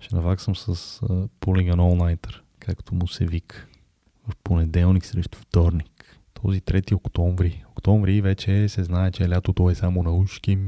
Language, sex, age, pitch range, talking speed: Bulgarian, male, 20-39, 85-100 Hz, 150 wpm